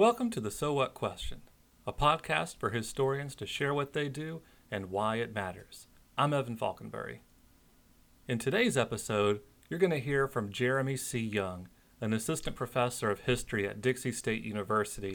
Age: 40-59